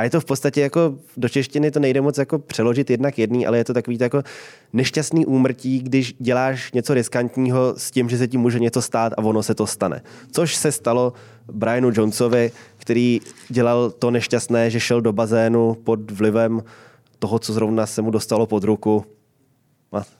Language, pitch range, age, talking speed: Czech, 115-140 Hz, 20-39, 185 wpm